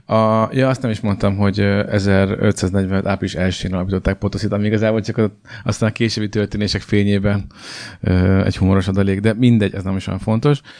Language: Hungarian